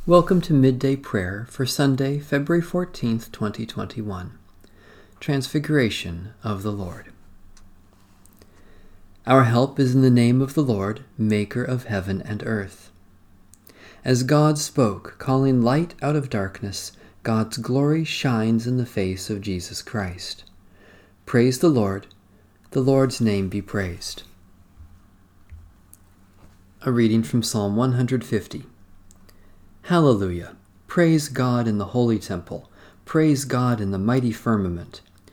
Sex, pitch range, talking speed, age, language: male, 95-130 Hz, 120 wpm, 40-59, English